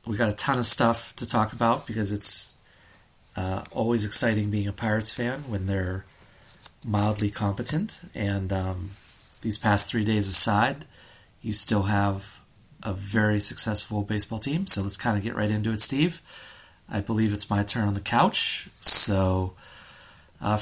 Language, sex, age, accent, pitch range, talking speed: English, male, 30-49, American, 100-120 Hz, 165 wpm